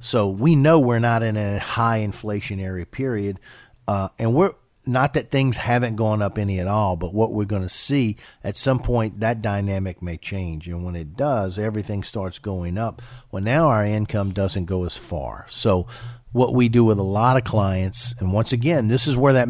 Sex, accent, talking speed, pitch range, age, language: male, American, 205 wpm, 95-120 Hz, 50-69, English